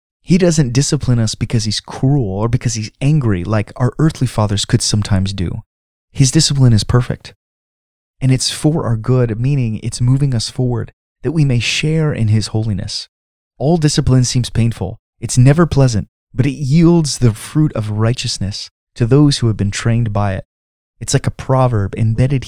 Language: English